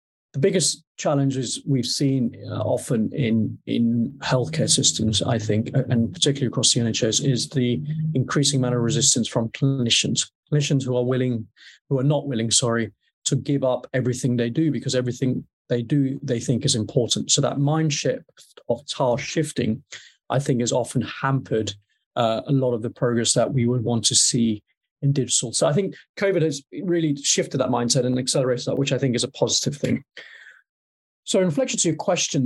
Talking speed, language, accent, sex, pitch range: 180 wpm, English, British, male, 120-140 Hz